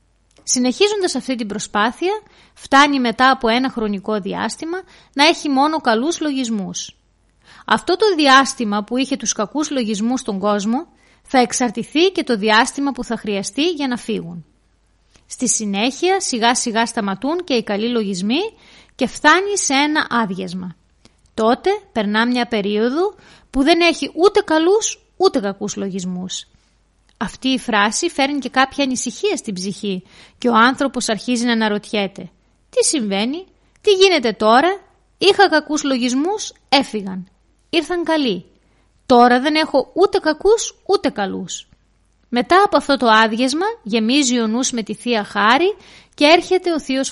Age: 30-49